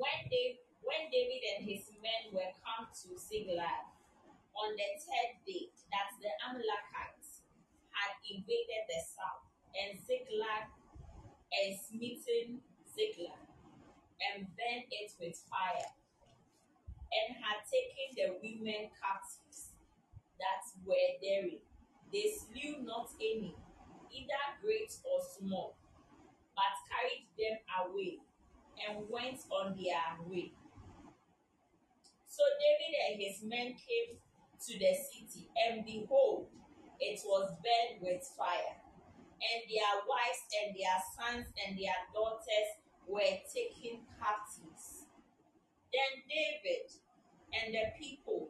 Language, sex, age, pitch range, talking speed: English, female, 20-39, 195-295 Hz, 115 wpm